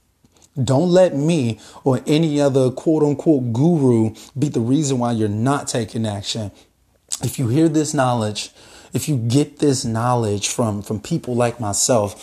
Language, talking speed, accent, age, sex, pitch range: English, 155 wpm, American, 30-49, male, 115-145 Hz